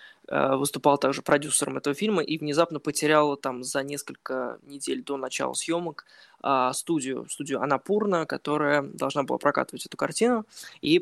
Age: 20-39